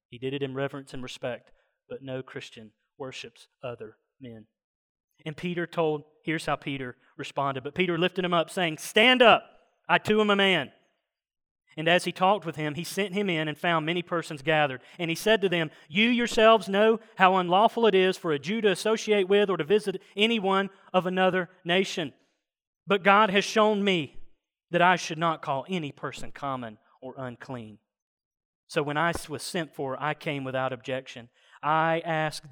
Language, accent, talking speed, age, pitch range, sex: English, American, 185 wpm, 40-59, 145-200 Hz, male